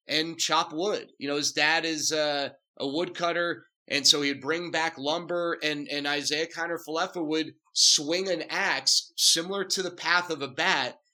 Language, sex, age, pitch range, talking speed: English, male, 30-49, 145-165 Hz, 170 wpm